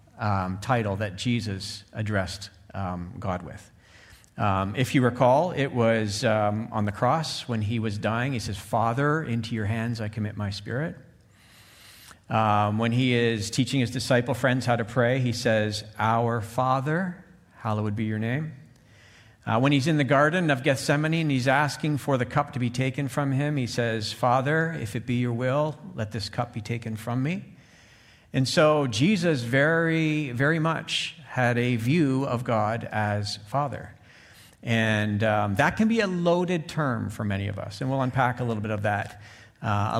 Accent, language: American, English